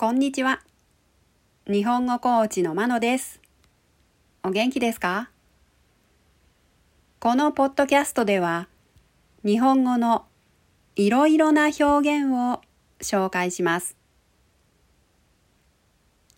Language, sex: Japanese, female